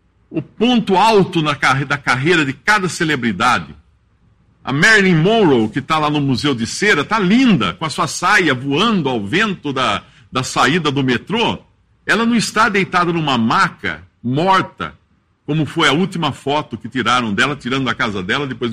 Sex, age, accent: male, 60-79, Brazilian